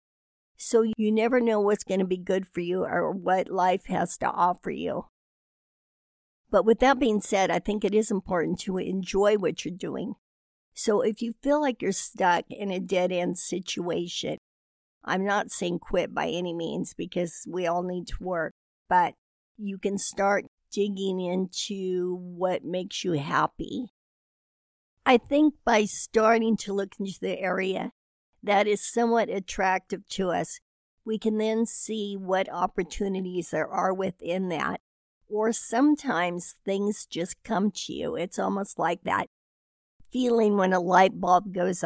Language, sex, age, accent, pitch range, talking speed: English, female, 60-79, American, 180-215 Hz, 155 wpm